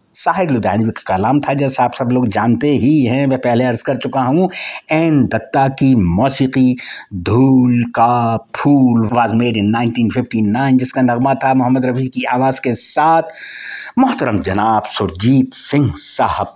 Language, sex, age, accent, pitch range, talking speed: English, male, 60-79, Indian, 110-150 Hz, 125 wpm